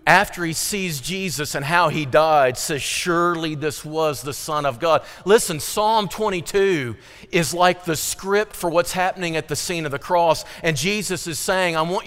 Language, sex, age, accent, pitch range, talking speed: English, male, 40-59, American, 160-205 Hz, 190 wpm